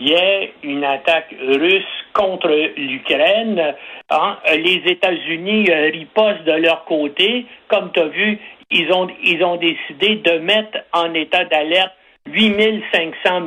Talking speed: 135 wpm